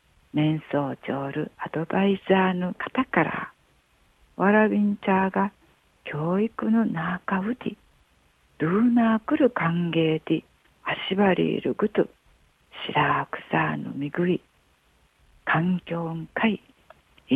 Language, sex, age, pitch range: Japanese, female, 50-69, 155-205 Hz